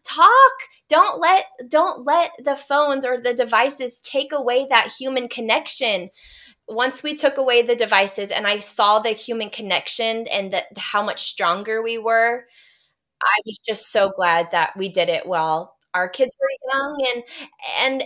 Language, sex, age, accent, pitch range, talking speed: English, female, 20-39, American, 210-290 Hz, 165 wpm